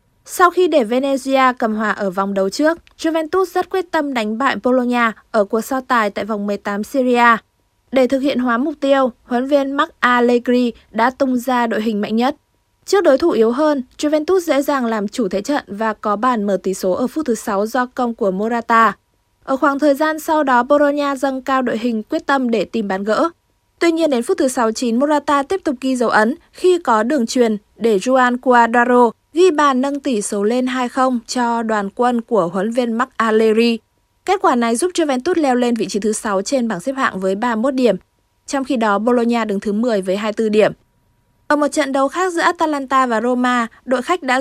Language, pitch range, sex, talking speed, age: Vietnamese, 220-280 Hz, female, 215 wpm, 20-39